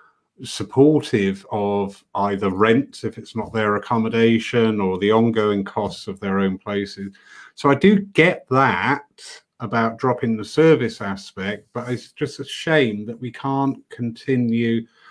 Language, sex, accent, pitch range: English, male, British, 105-135 Hz